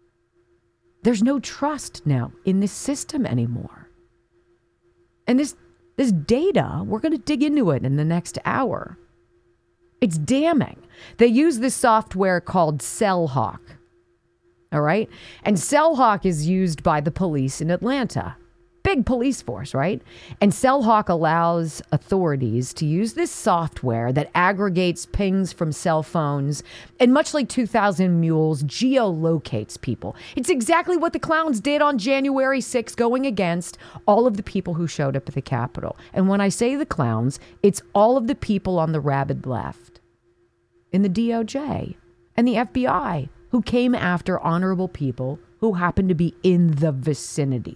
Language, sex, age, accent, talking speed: English, female, 40-59, American, 155 wpm